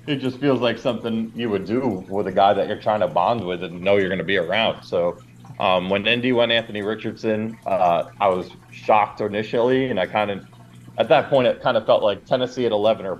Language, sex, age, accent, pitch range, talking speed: English, male, 30-49, American, 95-125 Hz, 240 wpm